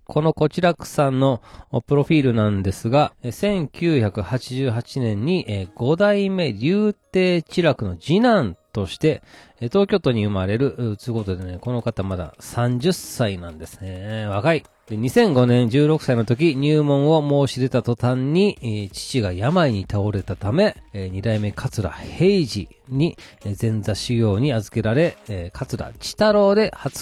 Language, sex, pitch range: Japanese, male, 110-165 Hz